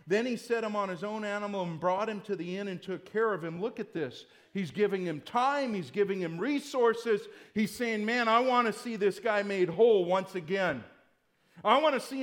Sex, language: male, English